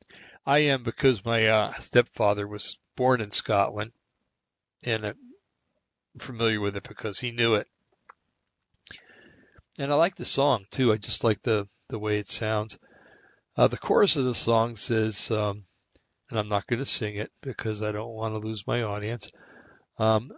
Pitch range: 105-125 Hz